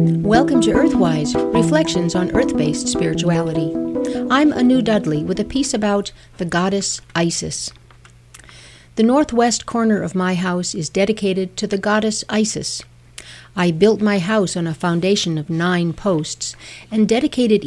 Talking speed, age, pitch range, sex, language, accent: 140 wpm, 60-79, 160-210 Hz, female, English, American